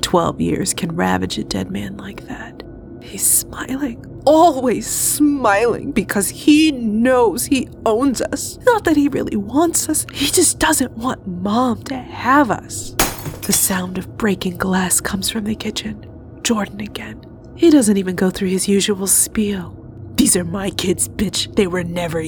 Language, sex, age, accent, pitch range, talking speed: English, female, 20-39, American, 185-265 Hz, 160 wpm